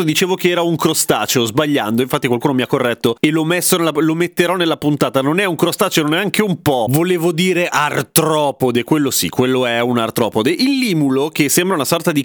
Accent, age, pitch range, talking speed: native, 30-49, 125-175 Hz, 200 wpm